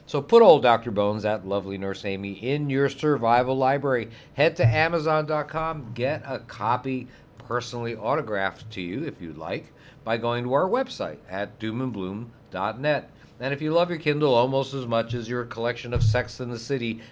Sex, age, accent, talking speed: male, 50-69, American, 175 wpm